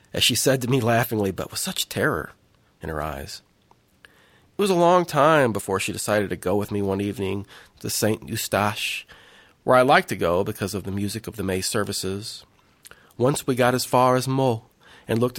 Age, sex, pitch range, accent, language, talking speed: 40-59, male, 105-145 Hz, American, English, 205 wpm